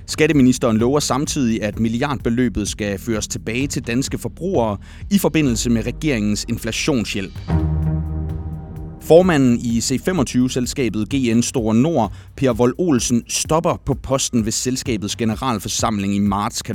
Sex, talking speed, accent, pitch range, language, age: male, 120 wpm, native, 110-140 Hz, Danish, 30-49